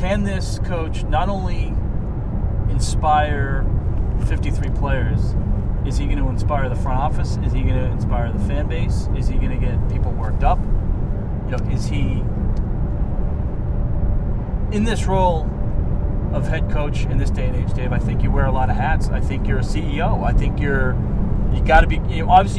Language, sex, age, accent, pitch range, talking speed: English, male, 30-49, American, 100-110 Hz, 190 wpm